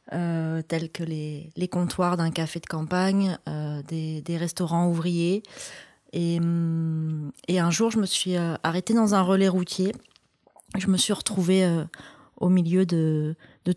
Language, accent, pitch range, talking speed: French, French, 160-185 Hz, 155 wpm